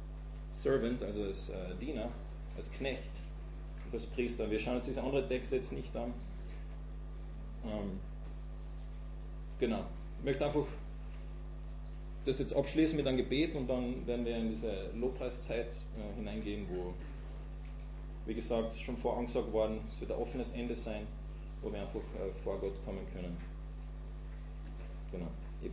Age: 30-49